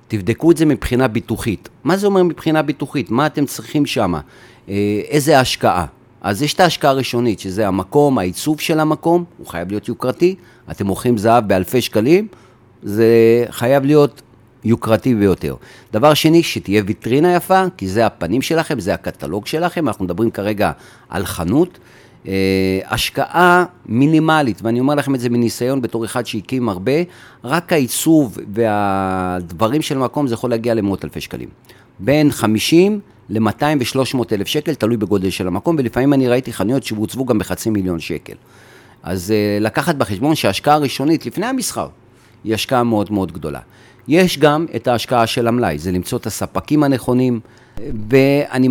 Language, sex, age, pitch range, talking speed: Hebrew, male, 40-59, 105-145 Hz, 155 wpm